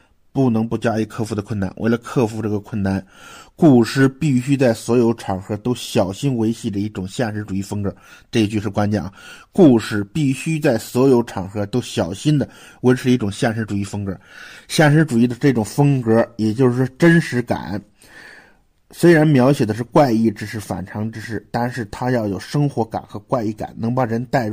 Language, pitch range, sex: Chinese, 105-135 Hz, male